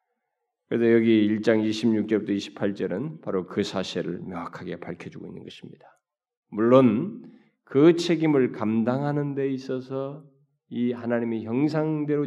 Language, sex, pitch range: Korean, male, 120-180 Hz